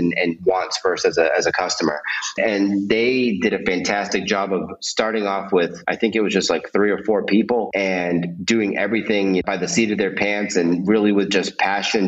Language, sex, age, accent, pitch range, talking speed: English, male, 30-49, American, 90-105 Hz, 210 wpm